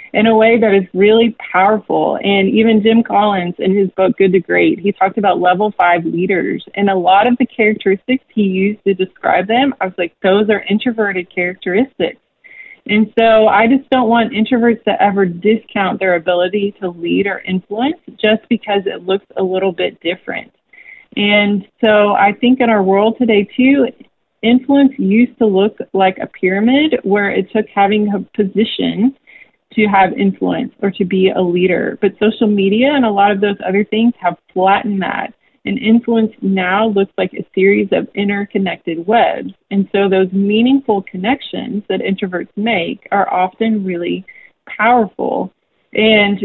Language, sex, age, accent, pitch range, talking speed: English, female, 30-49, American, 195-230 Hz, 170 wpm